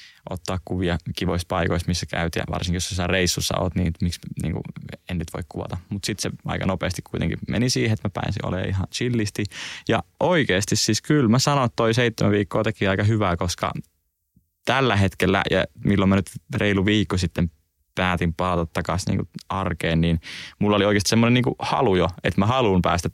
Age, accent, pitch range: 20-39, Finnish, 90-110 Hz